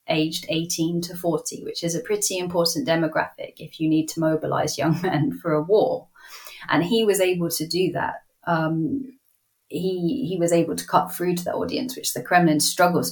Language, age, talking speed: English, 30-49, 190 wpm